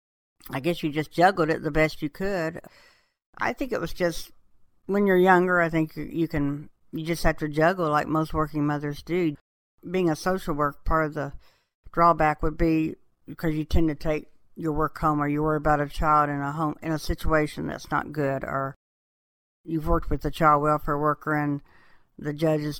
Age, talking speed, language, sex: 60-79, 200 wpm, English, female